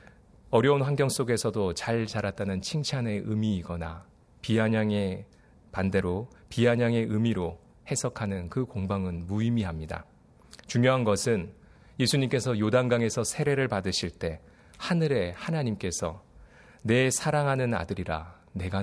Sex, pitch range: male, 90-120 Hz